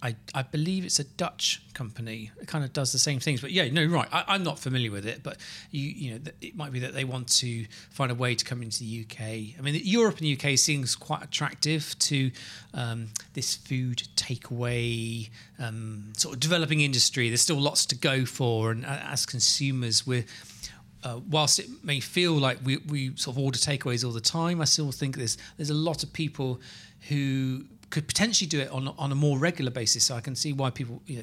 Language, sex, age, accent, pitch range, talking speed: English, male, 40-59, British, 120-155 Hz, 220 wpm